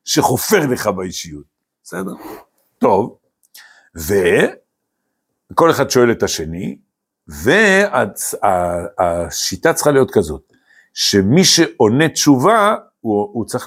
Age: 60-79